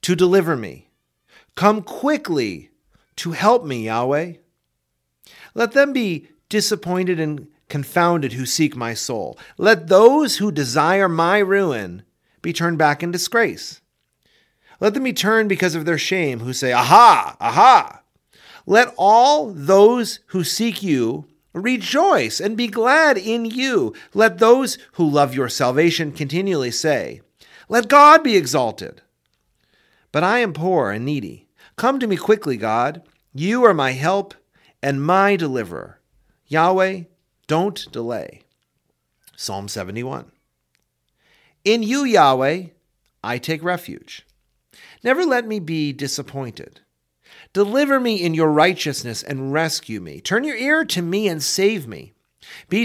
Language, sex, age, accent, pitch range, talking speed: English, male, 40-59, American, 140-215 Hz, 135 wpm